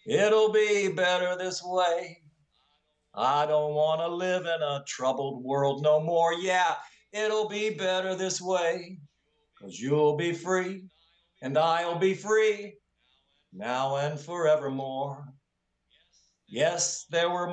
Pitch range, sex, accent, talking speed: 150-180 Hz, male, American, 125 wpm